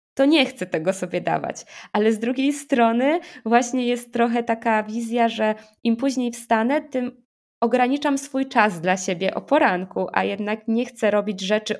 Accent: native